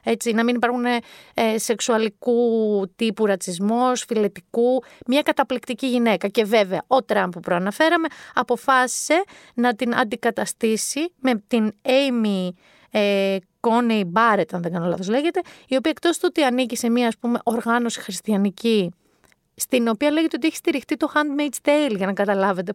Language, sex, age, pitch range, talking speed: Greek, female, 30-49, 195-260 Hz, 150 wpm